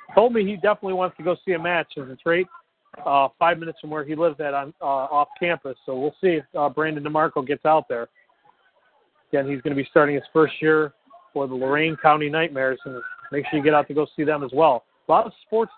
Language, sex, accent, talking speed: English, male, American, 250 wpm